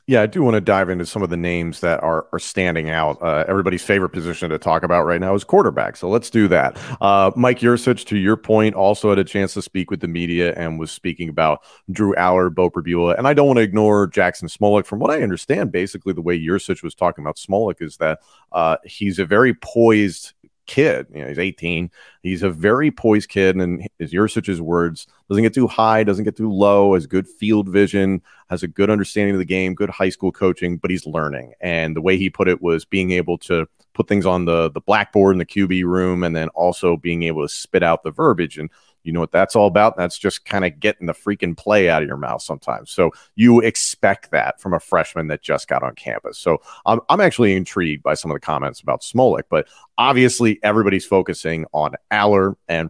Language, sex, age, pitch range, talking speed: English, male, 40-59, 85-105 Hz, 230 wpm